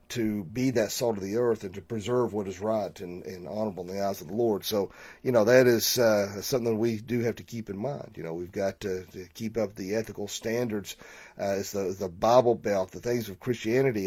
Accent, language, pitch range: American, English, 100-125 Hz